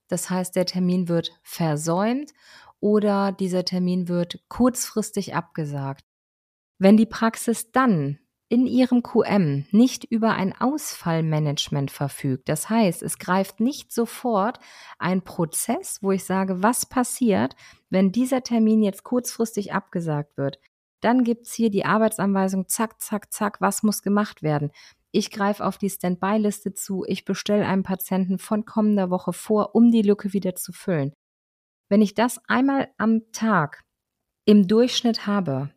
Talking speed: 145 wpm